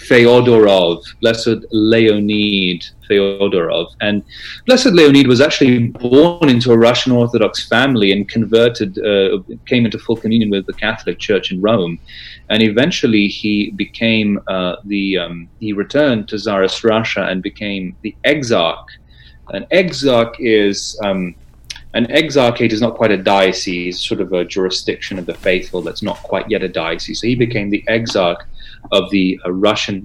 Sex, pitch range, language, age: male, 95-120 Hz, English, 30-49